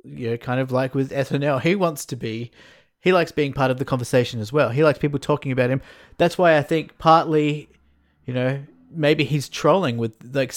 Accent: Australian